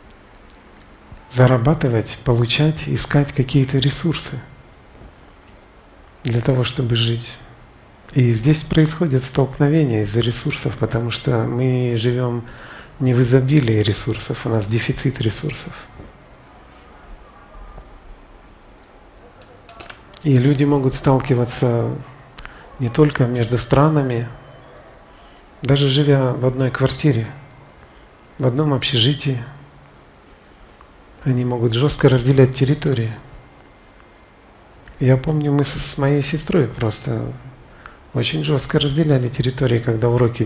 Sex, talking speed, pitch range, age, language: male, 90 wpm, 115-145 Hz, 40-59, Russian